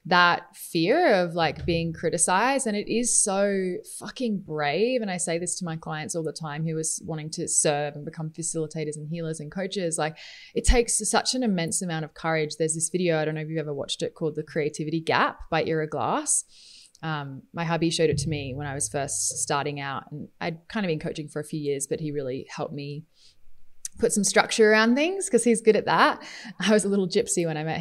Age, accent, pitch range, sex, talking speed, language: 20-39, Australian, 160-210 Hz, female, 230 wpm, English